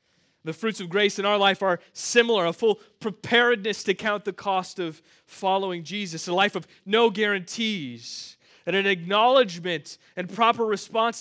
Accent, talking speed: American, 160 wpm